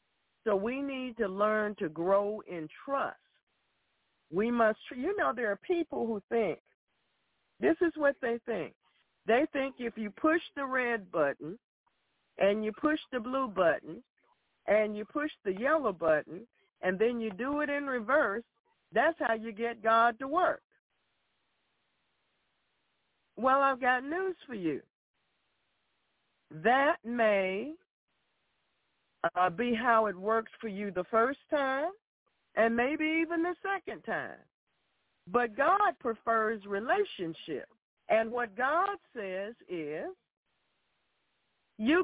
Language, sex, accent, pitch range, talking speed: English, female, American, 210-295 Hz, 130 wpm